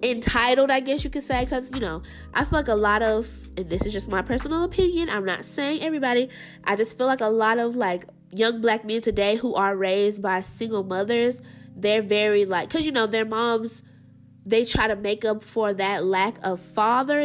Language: English